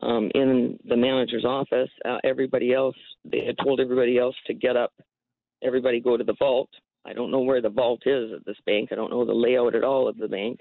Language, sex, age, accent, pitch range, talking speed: English, female, 50-69, American, 120-135 Hz, 230 wpm